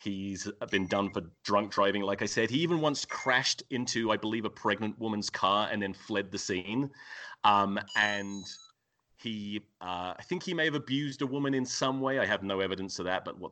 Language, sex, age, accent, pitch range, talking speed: English, male, 30-49, British, 95-130 Hz, 215 wpm